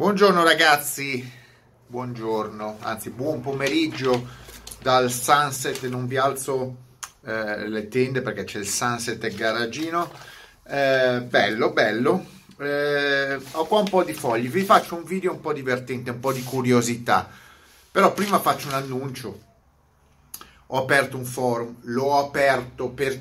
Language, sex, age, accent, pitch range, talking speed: Italian, male, 30-49, native, 110-135 Hz, 140 wpm